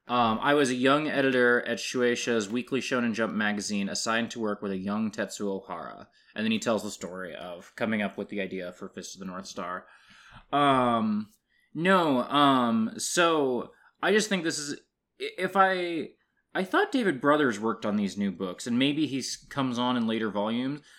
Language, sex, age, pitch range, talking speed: English, male, 20-39, 105-150 Hz, 190 wpm